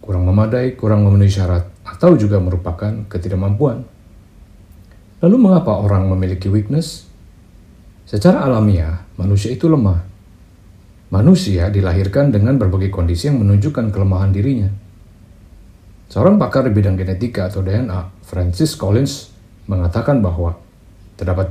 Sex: male